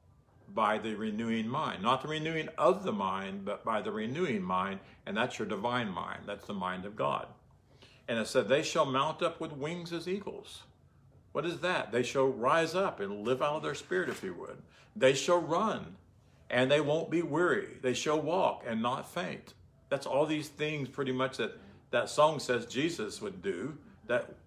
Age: 60-79